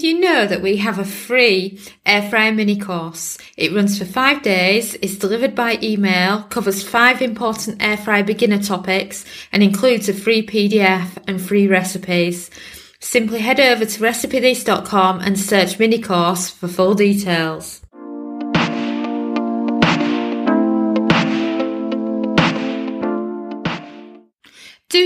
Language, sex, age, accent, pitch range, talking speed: English, female, 30-49, British, 170-235 Hz, 115 wpm